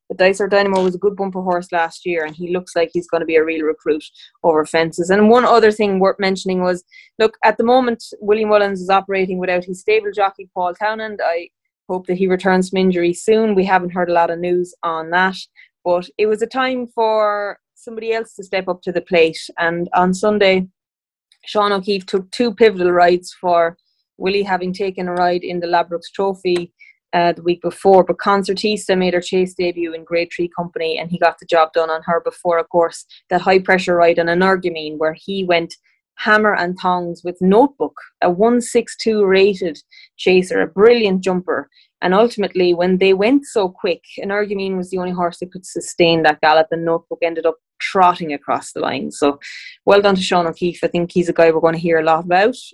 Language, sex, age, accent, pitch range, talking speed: English, female, 20-39, Irish, 170-205 Hz, 210 wpm